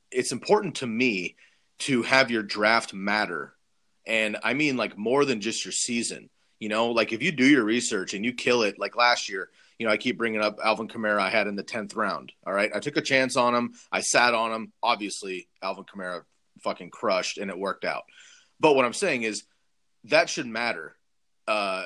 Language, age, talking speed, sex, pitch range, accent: English, 30-49, 210 wpm, male, 105-130 Hz, American